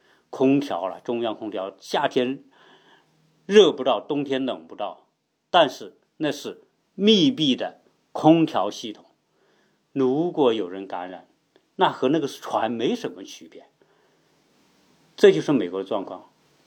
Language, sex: Chinese, male